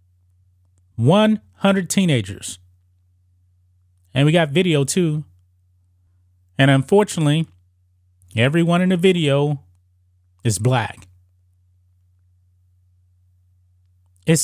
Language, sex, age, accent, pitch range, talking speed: English, male, 30-49, American, 90-150 Hz, 65 wpm